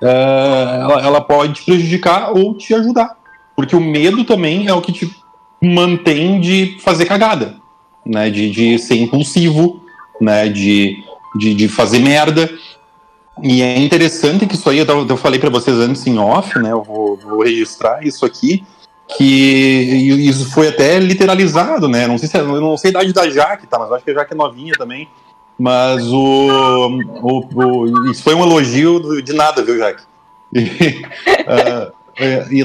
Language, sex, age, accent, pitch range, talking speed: Portuguese, male, 30-49, Brazilian, 125-170 Hz, 170 wpm